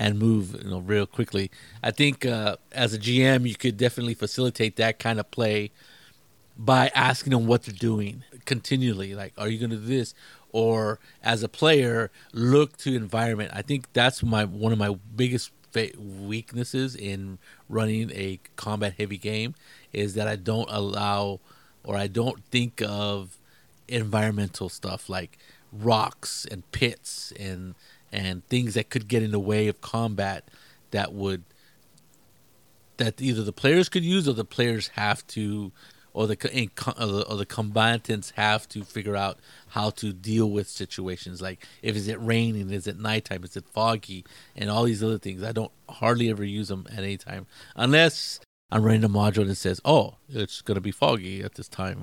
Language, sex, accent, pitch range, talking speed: English, male, American, 100-120 Hz, 175 wpm